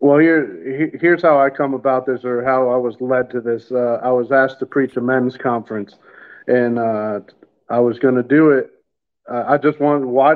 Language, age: English, 50-69